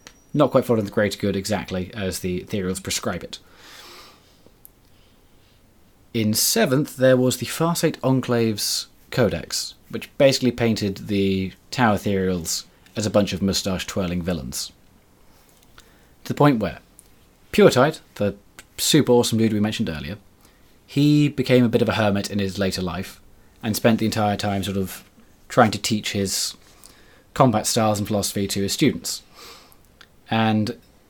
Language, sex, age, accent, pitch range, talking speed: English, male, 30-49, British, 100-130 Hz, 140 wpm